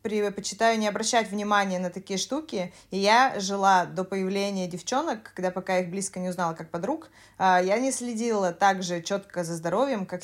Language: Russian